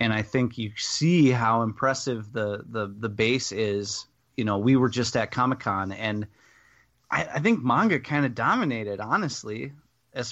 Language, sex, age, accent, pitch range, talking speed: English, male, 30-49, American, 115-135 Hz, 170 wpm